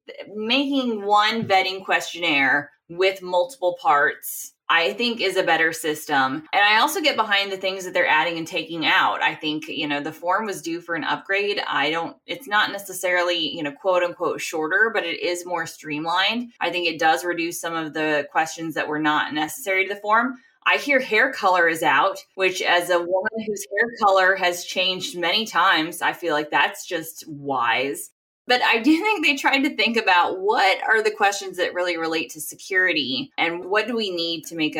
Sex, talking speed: female, 200 wpm